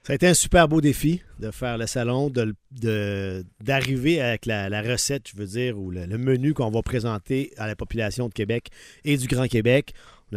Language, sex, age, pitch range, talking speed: French, male, 50-69, 110-145 Hz, 205 wpm